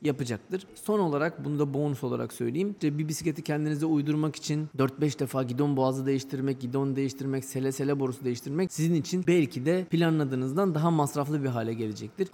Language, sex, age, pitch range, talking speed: Turkish, male, 30-49, 130-165 Hz, 170 wpm